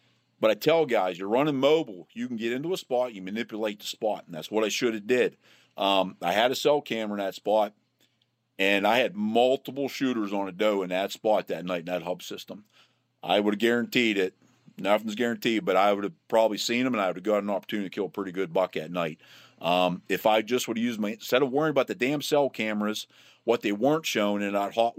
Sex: male